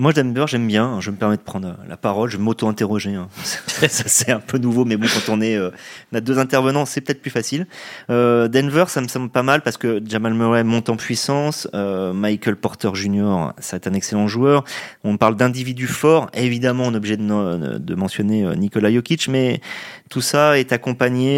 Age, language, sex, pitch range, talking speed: 30-49, French, male, 105-125 Hz, 195 wpm